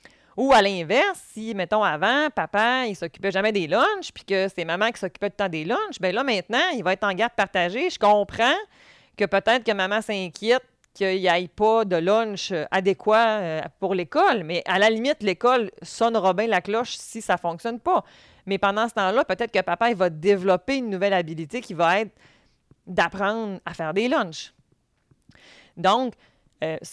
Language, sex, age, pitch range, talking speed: French, female, 30-49, 185-235 Hz, 190 wpm